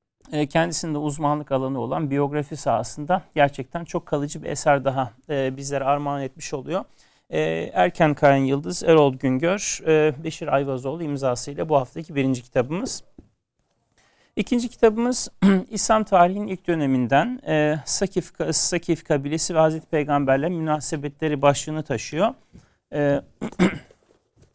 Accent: native